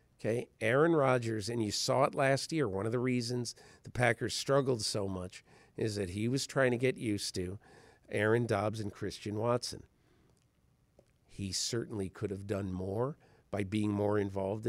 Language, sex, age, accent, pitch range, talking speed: English, male, 50-69, American, 100-130 Hz, 170 wpm